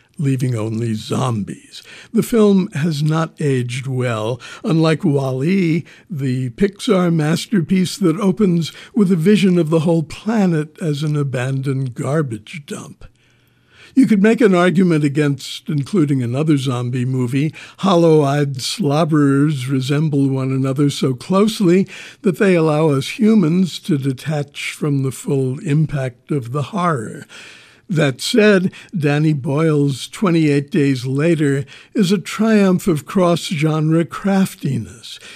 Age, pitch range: 60-79, 140-180 Hz